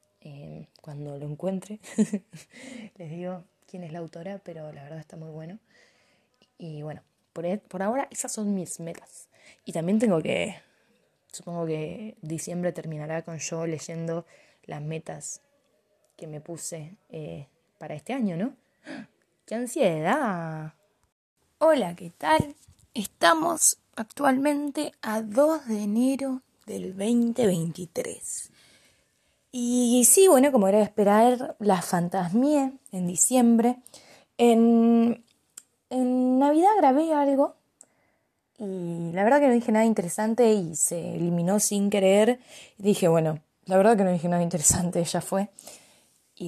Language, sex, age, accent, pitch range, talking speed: Spanish, female, 20-39, Argentinian, 170-245 Hz, 130 wpm